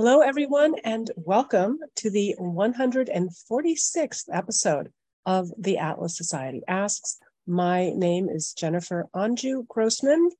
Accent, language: American, English